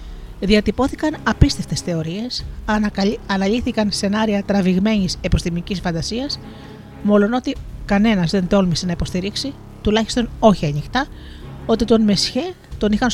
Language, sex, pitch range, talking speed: Greek, female, 180-225 Hz, 105 wpm